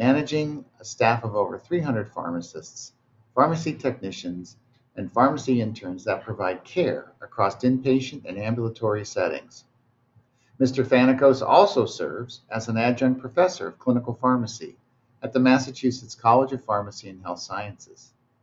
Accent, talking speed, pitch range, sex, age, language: American, 130 wpm, 110-130 Hz, male, 50-69, English